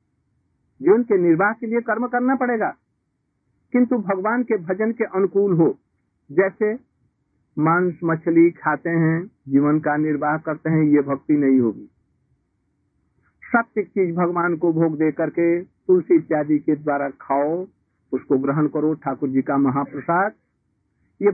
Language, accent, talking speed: Hindi, native, 140 wpm